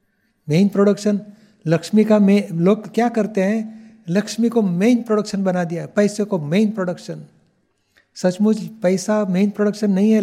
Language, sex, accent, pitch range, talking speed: Hindi, male, native, 185-225 Hz, 145 wpm